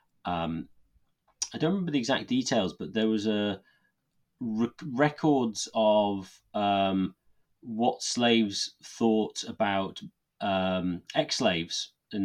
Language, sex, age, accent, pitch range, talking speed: English, male, 30-49, British, 95-110 Hz, 110 wpm